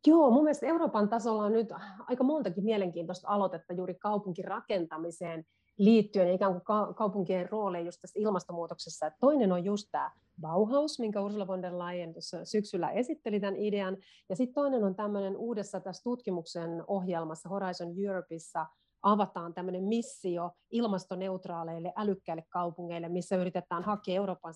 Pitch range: 175-210 Hz